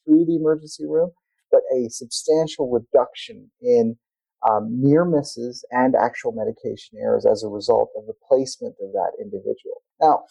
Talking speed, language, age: 150 wpm, English, 40-59